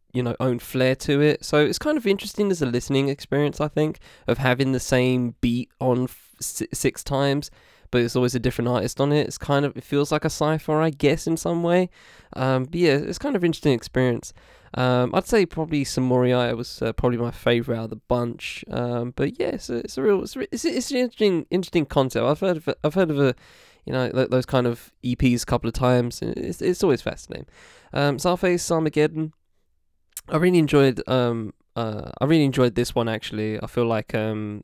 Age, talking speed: 10-29, 220 wpm